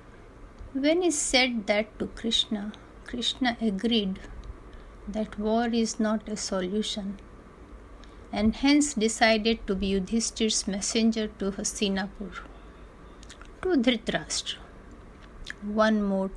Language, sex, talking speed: Hindi, female, 100 wpm